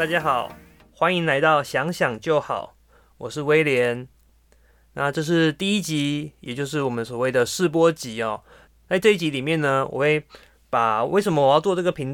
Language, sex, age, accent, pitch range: Chinese, male, 20-39, native, 125-170 Hz